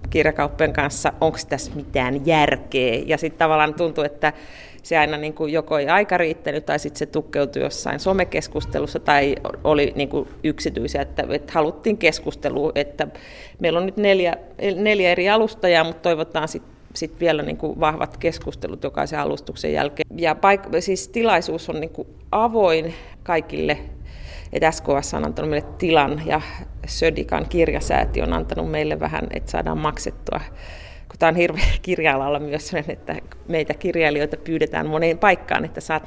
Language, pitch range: Finnish, 145-175 Hz